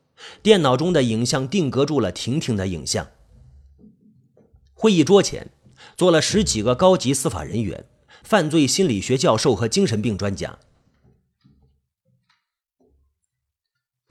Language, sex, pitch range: Chinese, male, 100-140 Hz